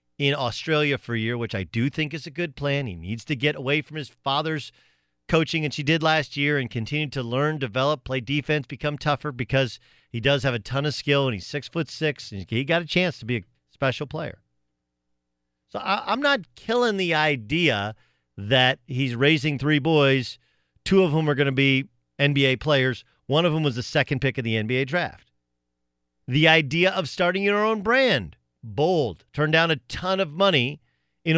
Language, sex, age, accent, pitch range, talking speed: English, male, 40-59, American, 110-155 Hz, 205 wpm